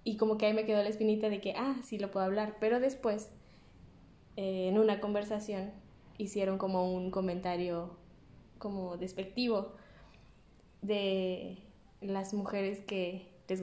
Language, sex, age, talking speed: Spanish, female, 10-29, 140 wpm